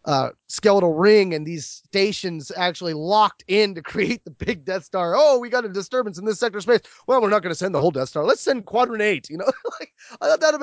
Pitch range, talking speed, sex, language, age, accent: 145-195 Hz, 255 wpm, male, English, 20-39, American